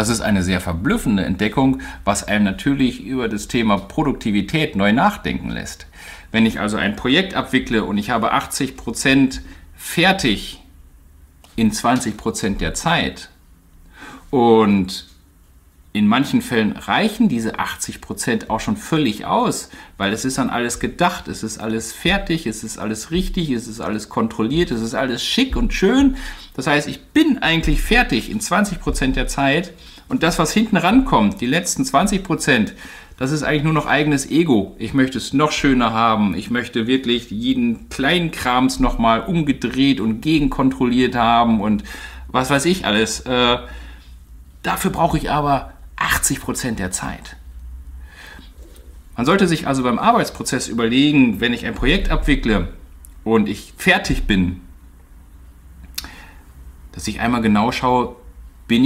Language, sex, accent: German, male, German